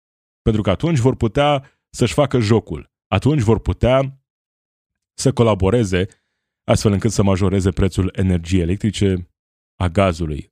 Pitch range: 90-115 Hz